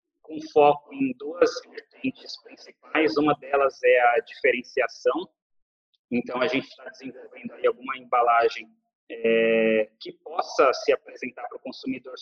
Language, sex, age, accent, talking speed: Portuguese, male, 30-49, Brazilian, 135 wpm